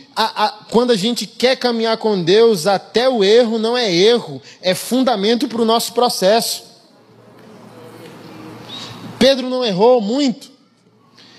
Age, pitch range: 20-39, 175-230 Hz